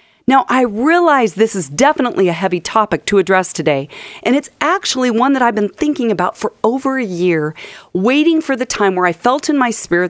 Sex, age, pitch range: female, 40-59, 175-255 Hz